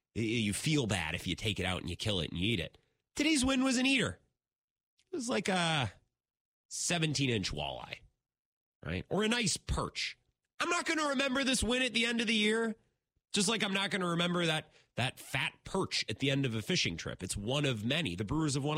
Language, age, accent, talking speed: English, 30-49, American, 225 wpm